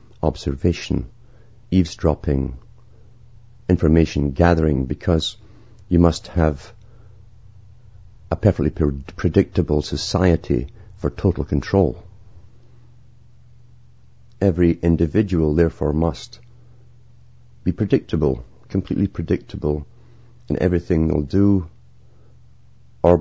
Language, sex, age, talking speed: English, male, 50-69, 70 wpm